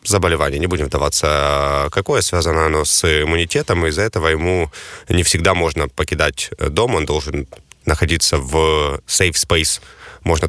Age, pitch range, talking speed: 20-39, 80-100 Hz, 135 wpm